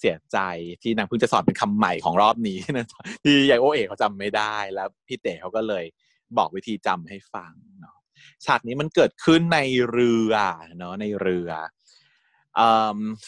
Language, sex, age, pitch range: Thai, male, 20-39, 105-145 Hz